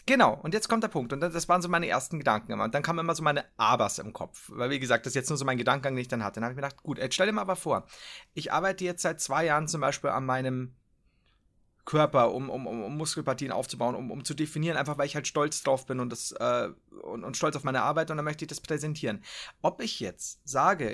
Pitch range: 135-170 Hz